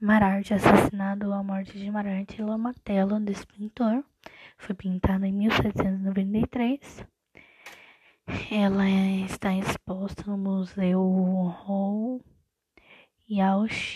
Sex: female